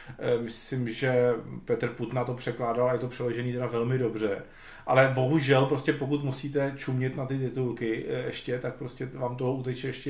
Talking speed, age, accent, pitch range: 170 wpm, 40-59, native, 130-165 Hz